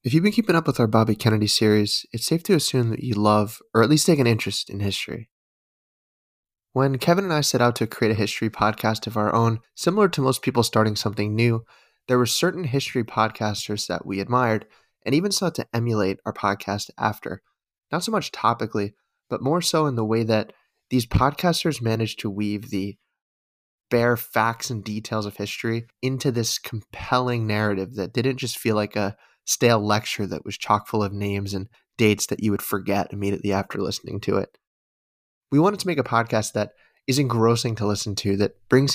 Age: 20-39